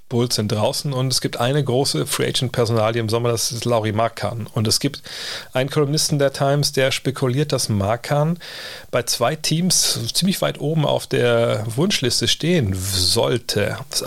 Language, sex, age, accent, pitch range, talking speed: German, male, 40-59, German, 110-140 Hz, 160 wpm